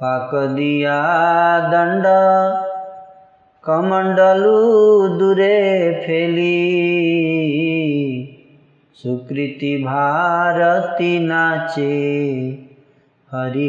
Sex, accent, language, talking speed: male, native, Hindi, 45 wpm